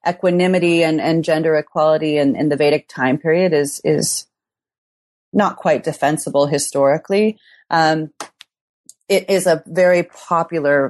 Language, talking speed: English, 125 wpm